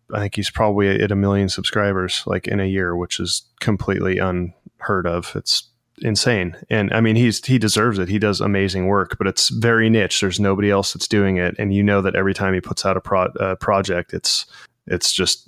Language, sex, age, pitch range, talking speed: English, male, 20-39, 90-110 Hz, 215 wpm